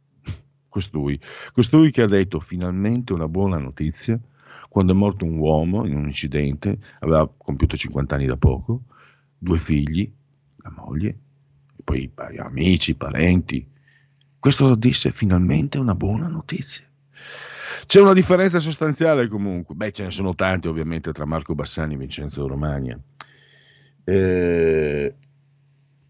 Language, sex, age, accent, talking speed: Italian, male, 50-69, native, 125 wpm